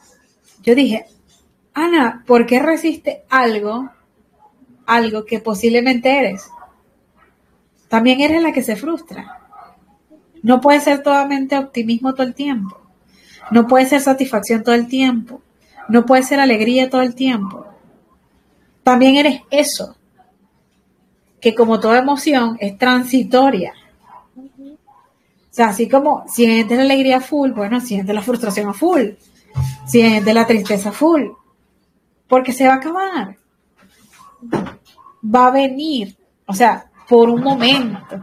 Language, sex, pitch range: Spanish, female, 230-275 Hz